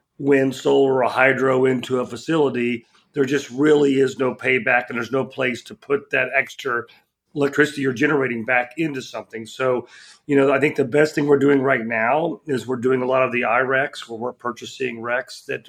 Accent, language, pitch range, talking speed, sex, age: American, English, 130-145 Hz, 200 wpm, male, 40-59